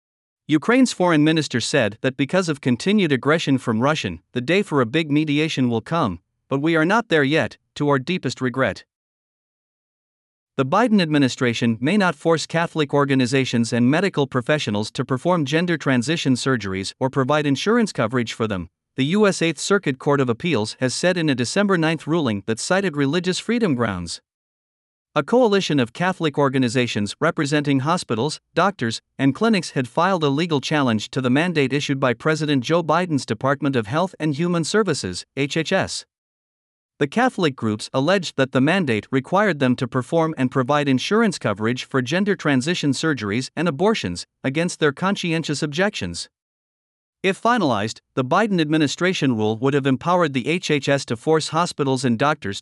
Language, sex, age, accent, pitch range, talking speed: English, male, 50-69, American, 130-170 Hz, 160 wpm